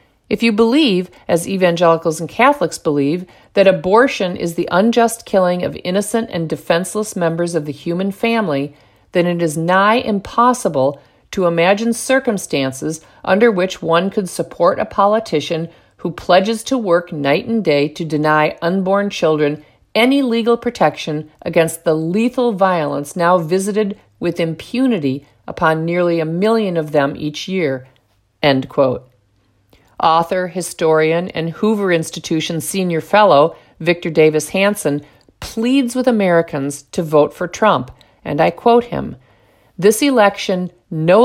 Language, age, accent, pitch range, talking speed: English, 50-69, American, 160-205 Hz, 135 wpm